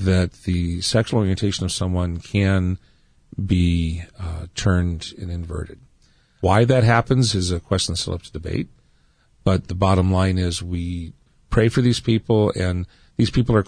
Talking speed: 160 wpm